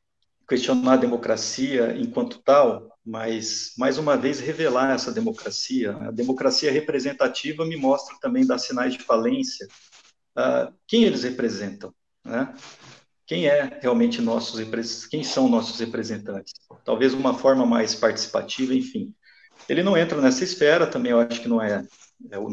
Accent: Brazilian